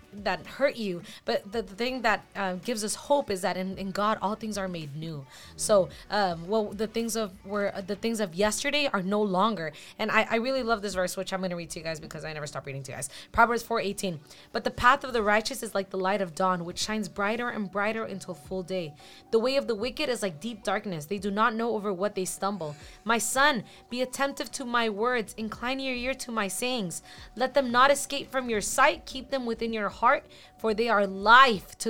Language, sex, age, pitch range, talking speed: English, female, 20-39, 195-240 Hz, 245 wpm